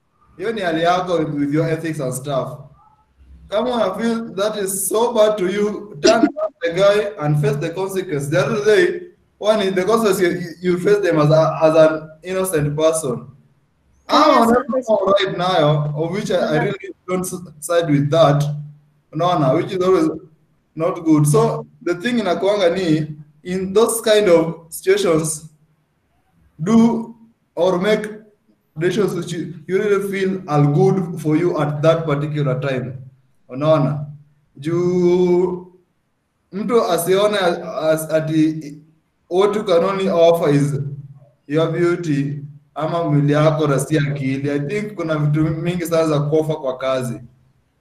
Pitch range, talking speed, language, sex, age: 150-195 Hz, 145 wpm, Swahili, male, 20-39